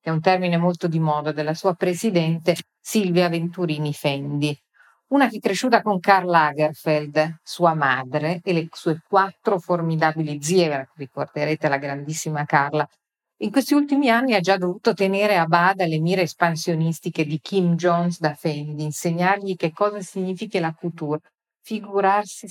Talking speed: 150 wpm